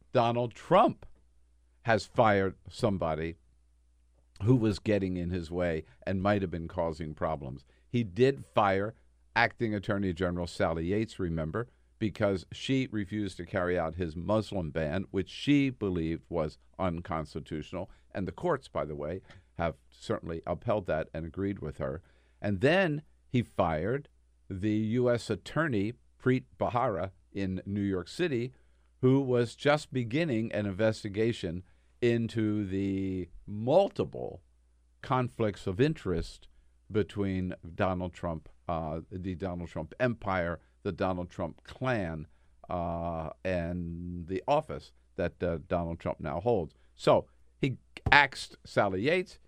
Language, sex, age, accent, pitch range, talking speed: English, male, 50-69, American, 80-110 Hz, 130 wpm